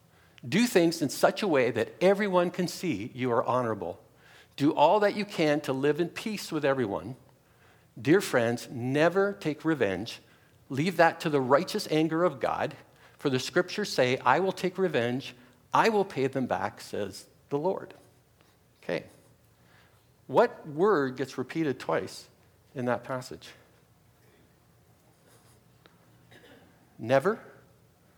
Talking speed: 135 wpm